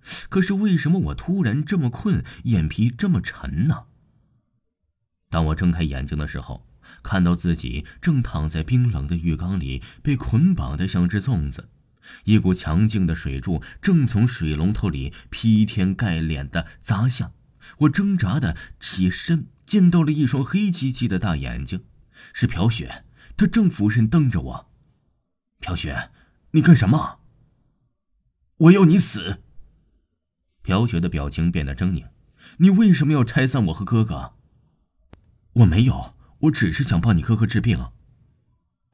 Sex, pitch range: male, 80-125 Hz